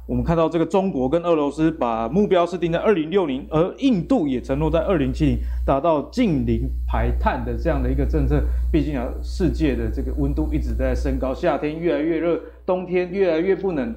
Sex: male